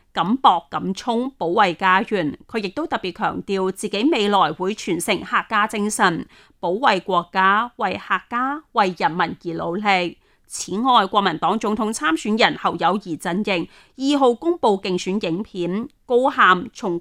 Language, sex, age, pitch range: Chinese, female, 30-49, 185-255 Hz